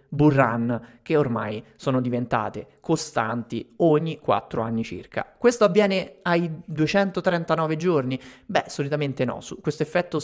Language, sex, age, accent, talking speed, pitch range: Italian, male, 30-49, native, 110 wpm, 125-170 Hz